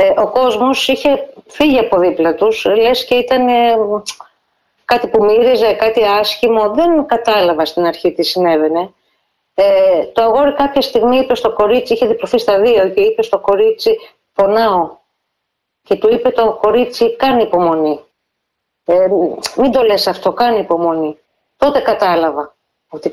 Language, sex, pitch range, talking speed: Greek, female, 175-240 Hz, 145 wpm